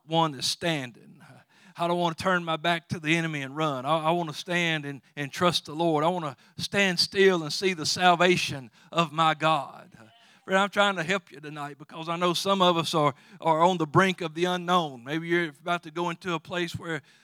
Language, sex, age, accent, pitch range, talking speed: English, male, 50-69, American, 150-185 Hz, 225 wpm